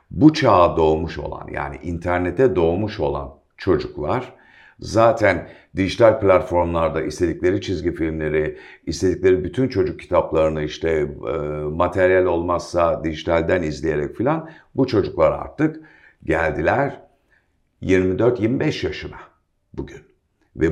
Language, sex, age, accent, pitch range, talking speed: Turkish, male, 50-69, native, 85-115 Hz, 95 wpm